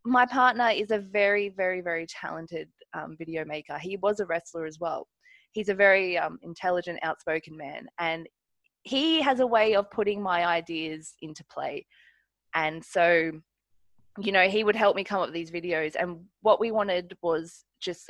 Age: 20-39